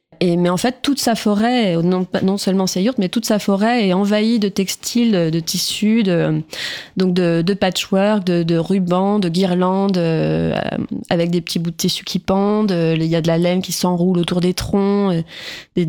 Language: French